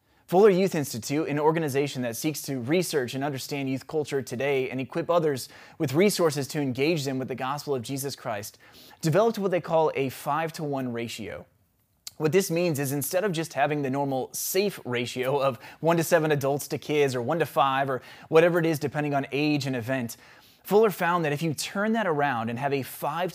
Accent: American